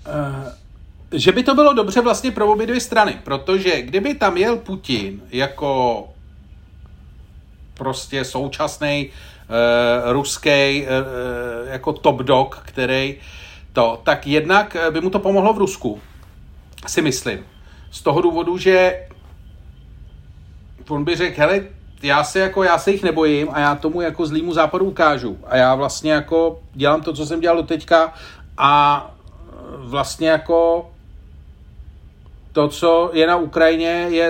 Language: Czech